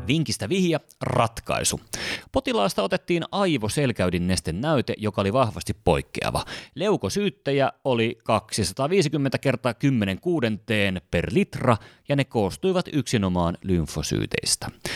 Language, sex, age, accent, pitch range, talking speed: Finnish, male, 30-49, native, 90-130 Hz, 95 wpm